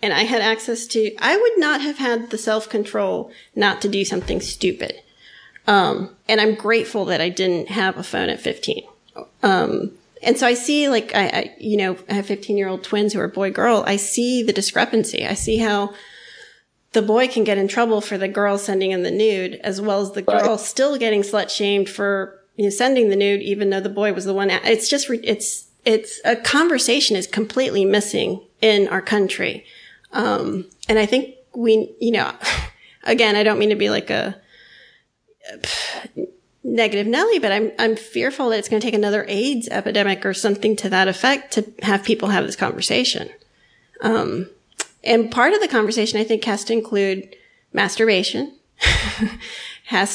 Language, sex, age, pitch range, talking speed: English, female, 40-59, 200-235 Hz, 190 wpm